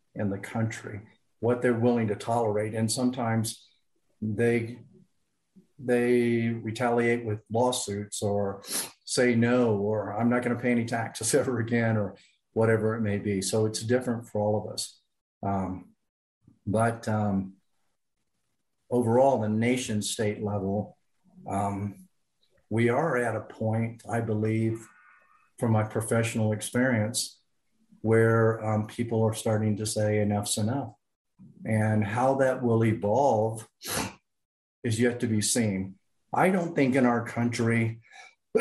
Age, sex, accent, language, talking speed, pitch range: 50-69, male, American, English, 135 wpm, 105-125 Hz